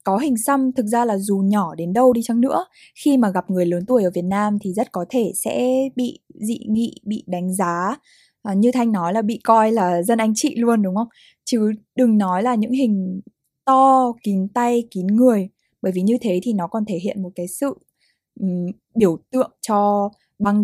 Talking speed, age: 210 wpm, 20-39